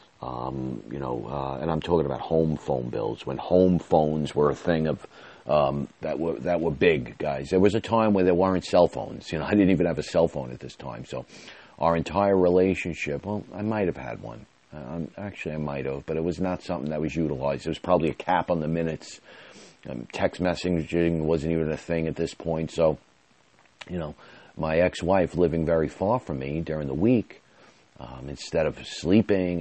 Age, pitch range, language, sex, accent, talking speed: 40-59, 75-90 Hz, English, male, American, 210 wpm